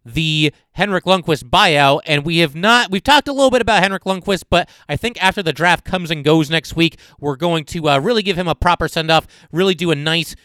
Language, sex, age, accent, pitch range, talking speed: English, male, 30-49, American, 145-180 Hz, 240 wpm